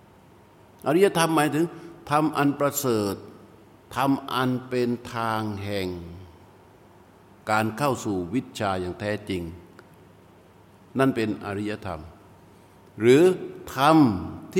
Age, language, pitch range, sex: 60-79, Thai, 100-145 Hz, male